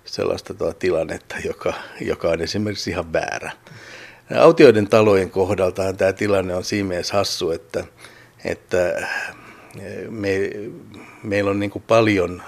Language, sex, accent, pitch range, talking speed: Finnish, male, native, 90-110 Hz, 110 wpm